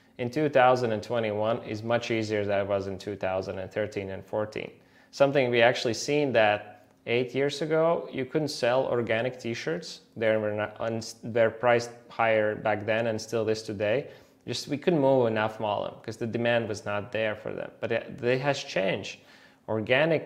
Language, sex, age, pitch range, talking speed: Italian, male, 20-39, 100-120 Hz, 170 wpm